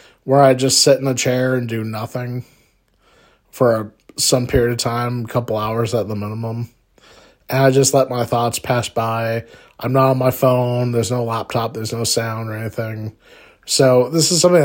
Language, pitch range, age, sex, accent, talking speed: English, 110-135 Hz, 20-39, male, American, 190 wpm